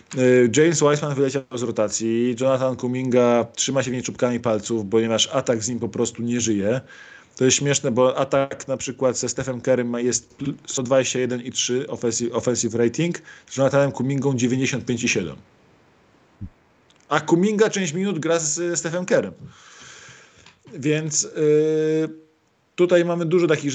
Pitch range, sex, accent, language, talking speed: 120-150 Hz, male, native, Polish, 135 wpm